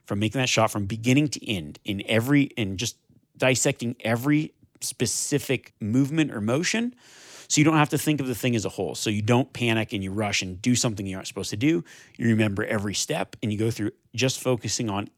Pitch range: 105-130 Hz